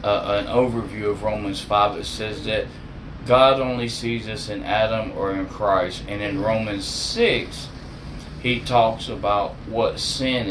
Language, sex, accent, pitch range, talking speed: English, male, American, 110-130 Hz, 155 wpm